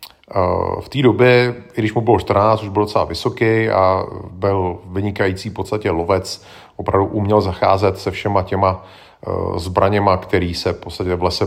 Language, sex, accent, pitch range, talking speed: Czech, male, native, 95-120 Hz, 145 wpm